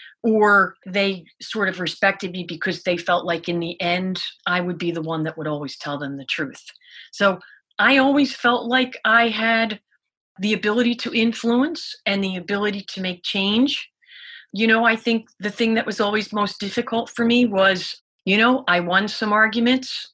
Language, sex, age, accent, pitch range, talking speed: English, female, 40-59, American, 160-215 Hz, 185 wpm